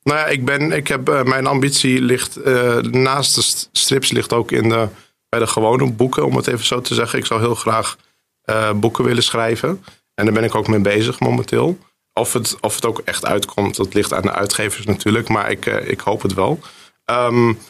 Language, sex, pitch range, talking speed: Dutch, male, 110-125 Hz, 220 wpm